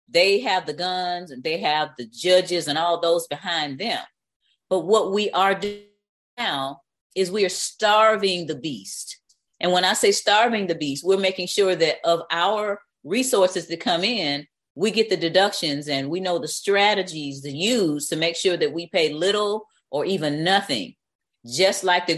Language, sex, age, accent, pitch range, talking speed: English, female, 40-59, American, 160-200 Hz, 180 wpm